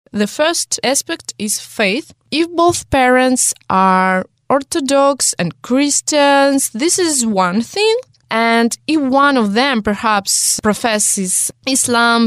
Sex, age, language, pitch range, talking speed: female, 20-39, English, 205-290 Hz, 115 wpm